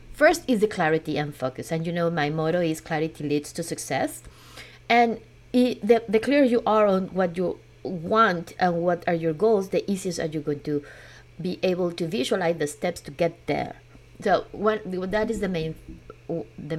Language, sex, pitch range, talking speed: English, female, 150-195 Hz, 180 wpm